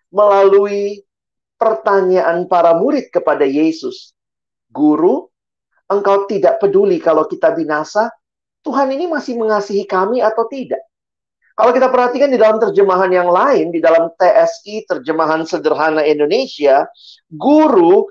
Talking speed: 115 wpm